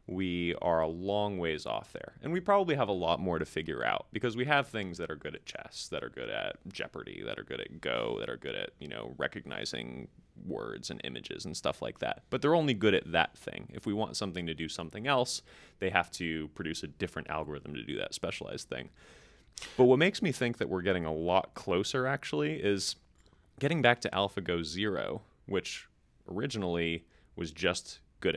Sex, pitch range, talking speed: male, 80-105 Hz, 210 wpm